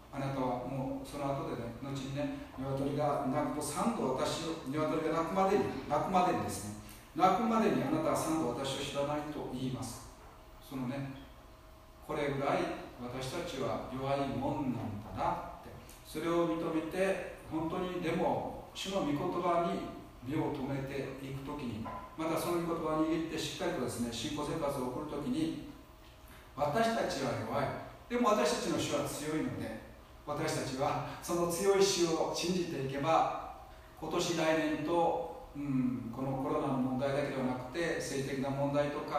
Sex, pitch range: male, 130-165 Hz